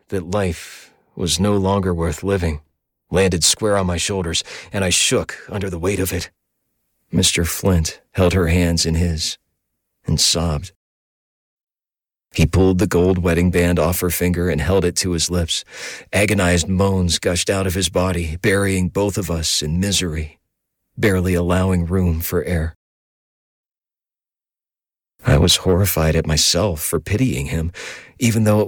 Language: English